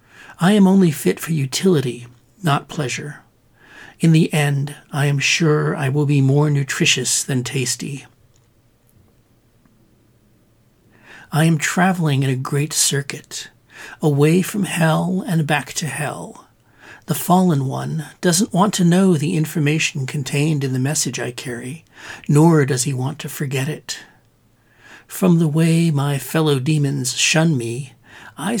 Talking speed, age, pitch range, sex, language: 140 wpm, 60-79, 130-160 Hz, male, English